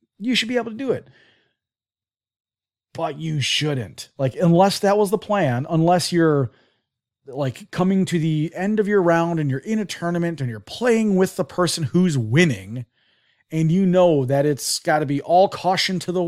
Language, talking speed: English, 190 wpm